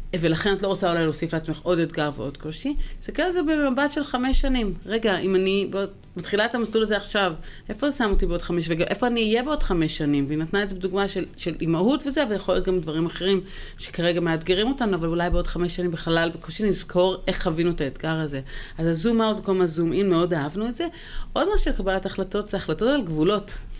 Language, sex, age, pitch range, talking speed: Hebrew, female, 30-49, 175-230 Hz, 215 wpm